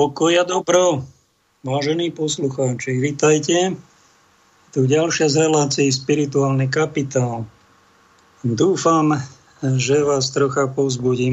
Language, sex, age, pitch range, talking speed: Slovak, male, 50-69, 135-155 Hz, 90 wpm